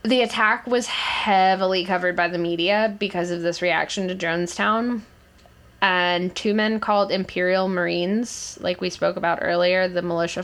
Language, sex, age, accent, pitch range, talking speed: English, female, 10-29, American, 175-200 Hz, 155 wpm